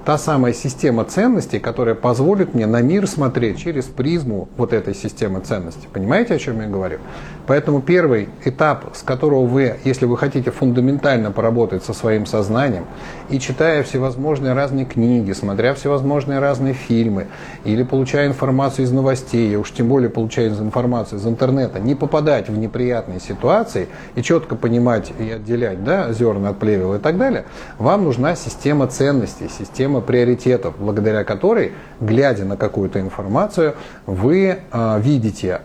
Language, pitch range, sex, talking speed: Russian, 110-145 Hz, male, 145 wpm